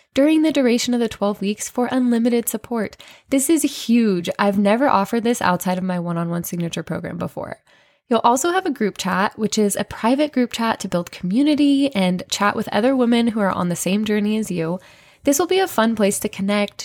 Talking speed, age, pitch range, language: 215 wpm, 20-39, 195-260 Hz, English